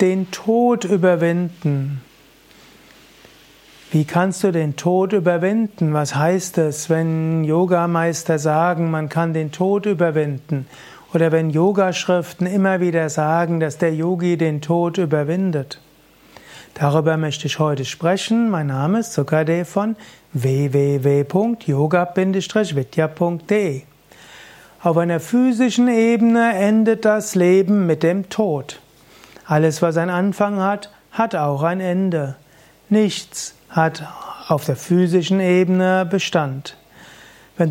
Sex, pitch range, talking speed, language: male, 155-190 Hz, 110 wpm, German